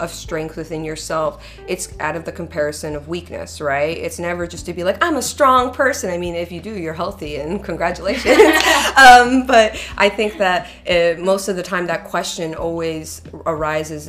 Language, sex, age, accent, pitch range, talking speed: English, female, 30-49, American, 145-185 Hz, 190 wpm